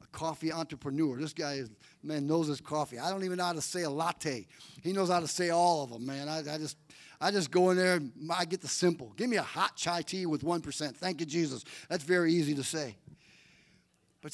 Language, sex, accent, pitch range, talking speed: English, male, American, 150-190 Hz, 240 wpm